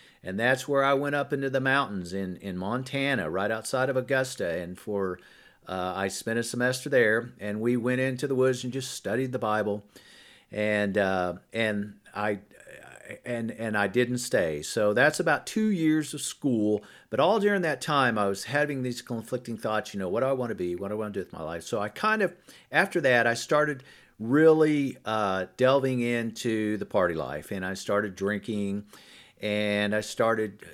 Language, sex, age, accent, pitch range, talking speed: English, male, 50-69, American, 105-135 Hz, 195 wpm